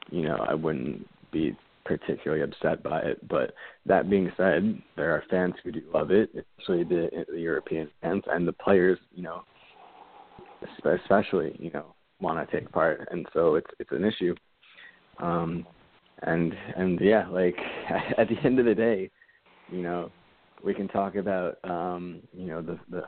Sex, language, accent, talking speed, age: male, English, American, 170 wpm, 20-39